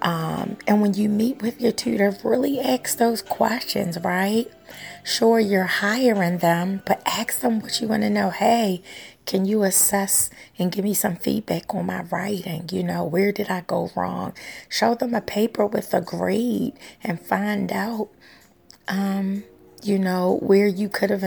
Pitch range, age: 180-205 Hz, 30-49